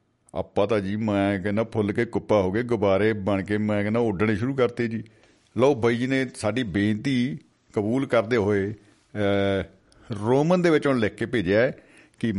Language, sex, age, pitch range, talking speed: Punjabi, male, 50-69, 100-125 Hz, 175 wpm